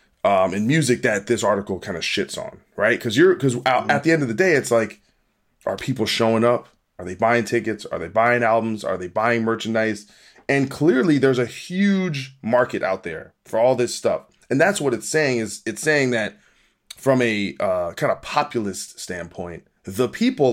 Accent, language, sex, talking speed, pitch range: American, English, male, 200 wpm, 105-130 Hz